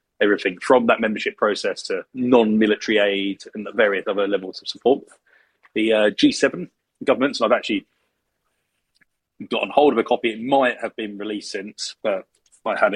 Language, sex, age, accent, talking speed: English, male, 30-49, British, 165 wpm